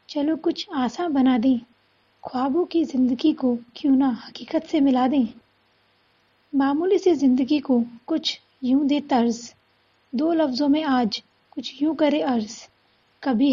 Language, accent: English, Indian